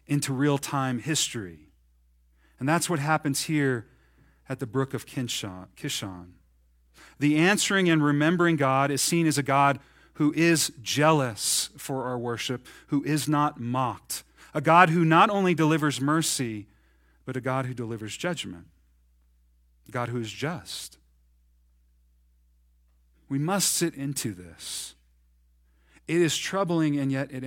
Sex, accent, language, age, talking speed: male, American, English, 40-59, 135 wpm